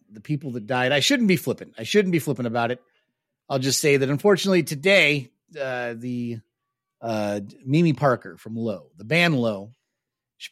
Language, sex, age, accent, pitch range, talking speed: English, male, 30-49, American, 105-145 Hz, 175 wpm